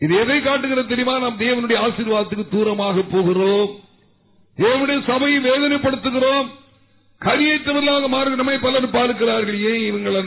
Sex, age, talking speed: male, 50-69, 80 wpm